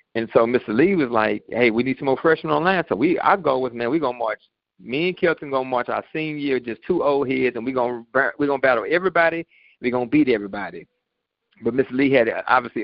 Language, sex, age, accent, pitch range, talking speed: English, male, 40-59, American, 120-150 Hz, 235 wpm